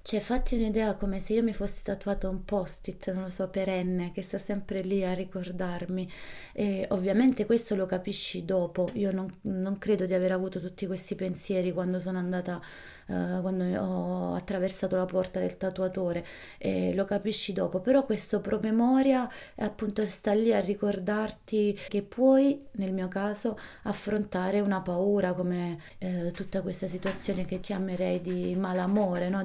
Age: 20-39